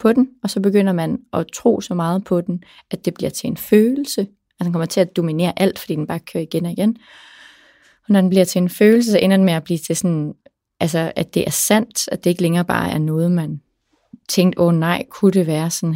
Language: English